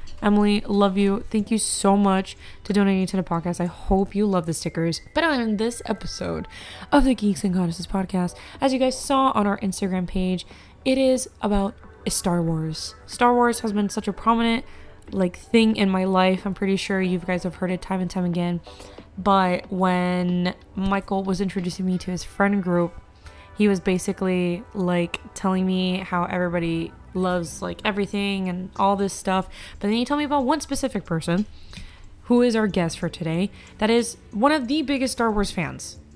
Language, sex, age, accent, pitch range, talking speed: English, female, 20-39, American, 180-210 Hz, 190 wpm